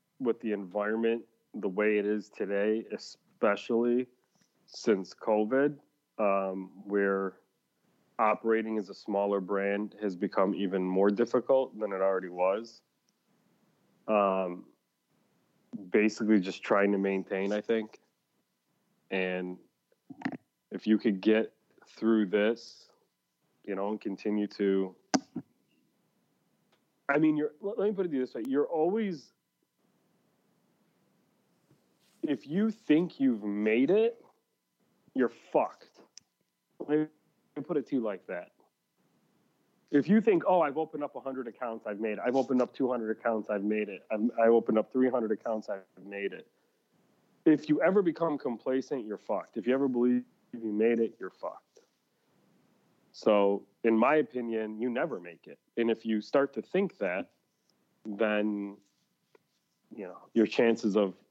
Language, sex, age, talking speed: English, male, 30-49, 135 wpm